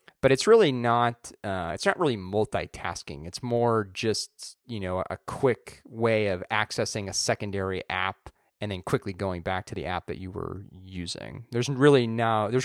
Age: 30-49